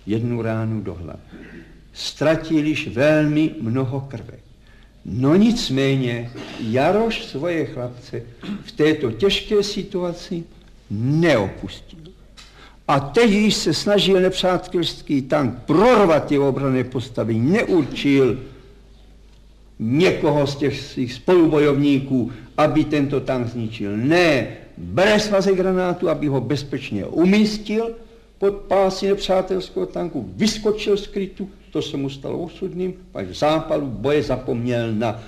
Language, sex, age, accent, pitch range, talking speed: Czech, male, 60-79, native, 120-180 Hz, 110 wpm